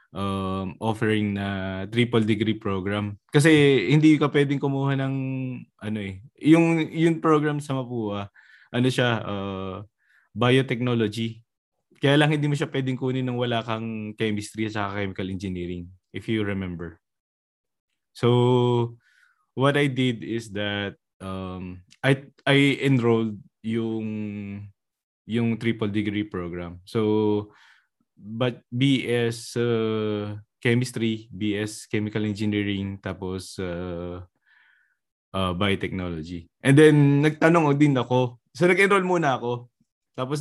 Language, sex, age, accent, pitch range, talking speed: Filipino, male, 20-39, native, 100-130 Hz, 115 wpm